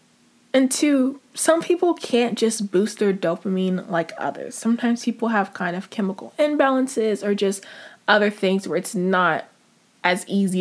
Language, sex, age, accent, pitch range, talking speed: English, female, 20-39, American, 195-250 Hz, 155 wpm